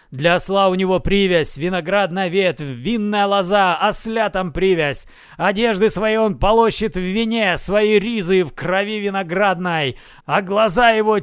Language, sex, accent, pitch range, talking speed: Russian, male, native, 155-210 Hz, 140 wpm